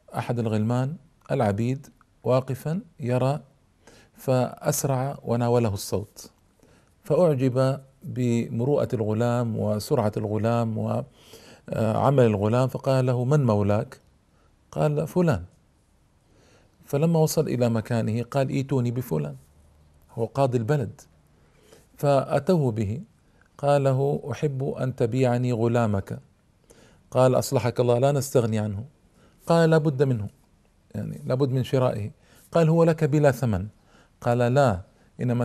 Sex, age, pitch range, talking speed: male, 50-69, 115-140 Hz, 100 wpm